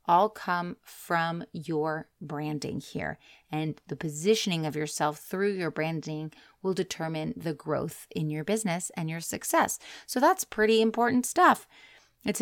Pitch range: 160-205 Hz